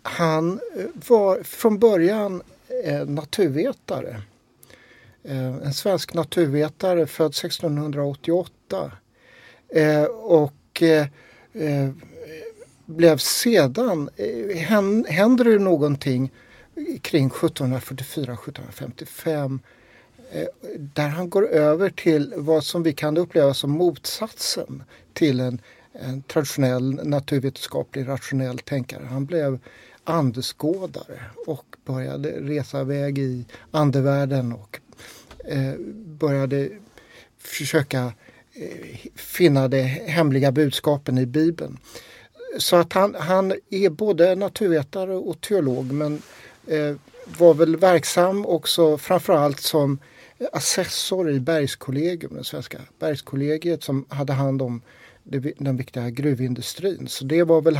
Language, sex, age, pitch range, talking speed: Swedish, male, 60-79, 135-170 Hz, 95 wpm